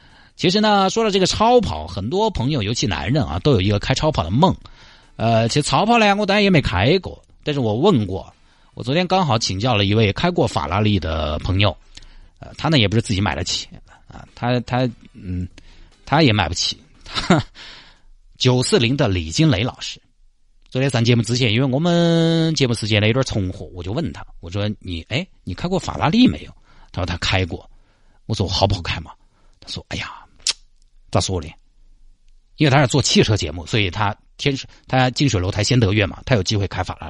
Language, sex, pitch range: Chinese, male, 95-140 Hz